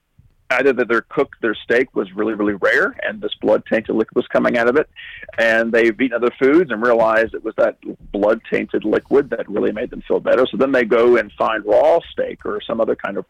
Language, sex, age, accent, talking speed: English, male, 40-59, American, 235 wpm